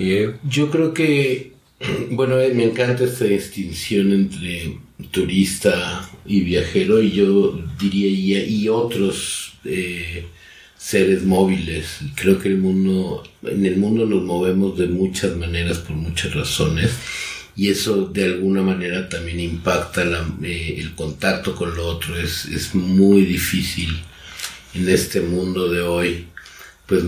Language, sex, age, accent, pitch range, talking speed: English, male, 50-69, Mexican, 85-100 Hz, 135 wpm